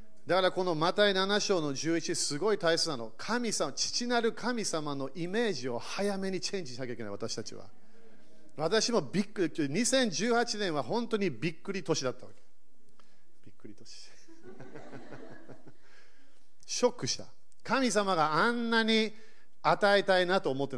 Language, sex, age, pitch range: Japanese, male, 40-59, 155-225 Hz